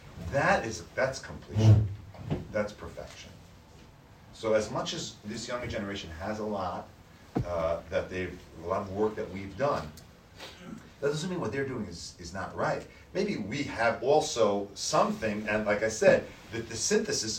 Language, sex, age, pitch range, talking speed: English, male, 40-59, 90-115 Hz, 165 wpm